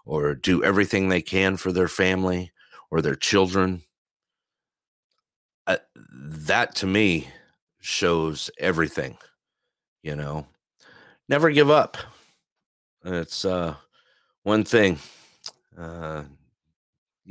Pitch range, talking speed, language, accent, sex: 80-100 Hz, 95 wpm, English, American, male